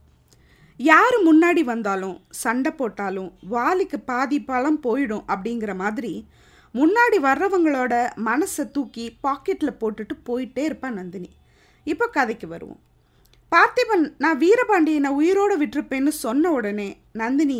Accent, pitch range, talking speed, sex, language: native, 230-330 Hz, 100 wpm, female, Tamil